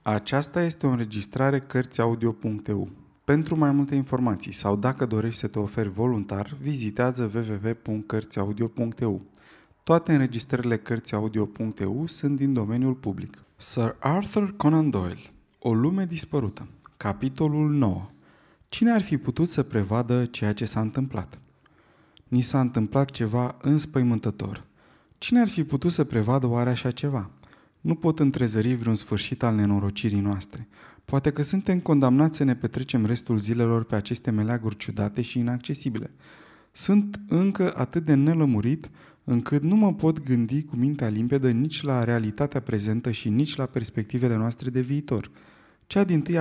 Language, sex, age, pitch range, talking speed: Romanian, male, 20-39, 110-145 Hz, 140 wpm